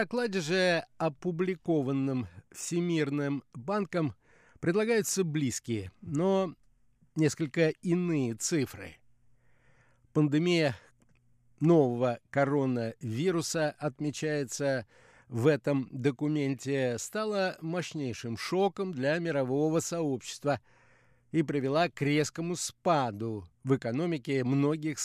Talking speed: 80 wpm